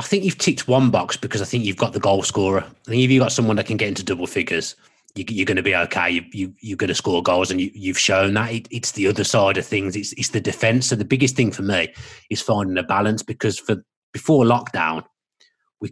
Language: English